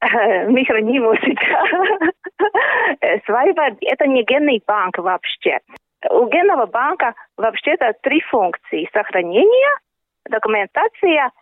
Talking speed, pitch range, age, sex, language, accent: 90 wpm, 210-305 Hz, 30-49, female, Russian, native